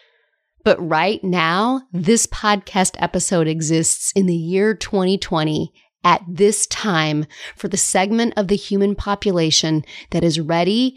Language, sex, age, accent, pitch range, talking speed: English, female, 30-49, American, 170-205 Hz, 130 wpm